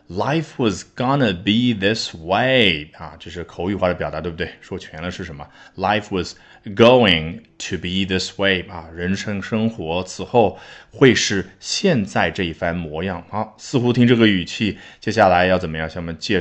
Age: 20-39